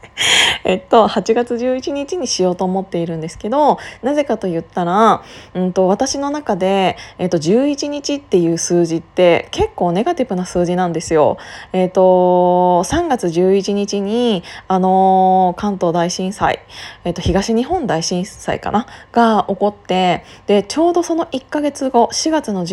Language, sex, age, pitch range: Japanese, female, 20-39, 180-225 Hz